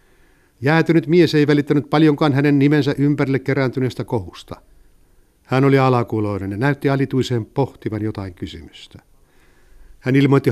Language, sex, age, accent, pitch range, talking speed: Finnish, male, 60-79, native, 110-150 Hz, 120 wpm